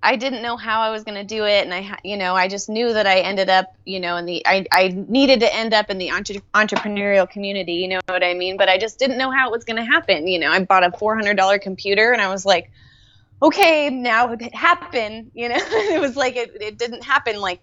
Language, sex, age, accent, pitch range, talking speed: English, female, 20-39, American, 185-225 Hz, 260 wpm